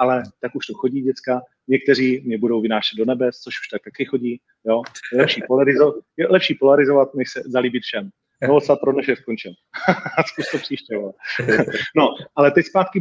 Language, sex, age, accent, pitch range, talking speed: Czech, male, 40-59, native, 120-140 Hz, 190 wpm